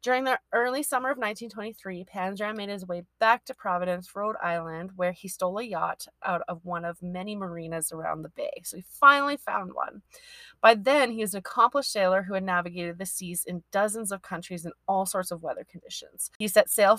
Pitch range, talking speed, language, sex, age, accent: 180-220 Hz, 210 wpm, English, female, 30-49, American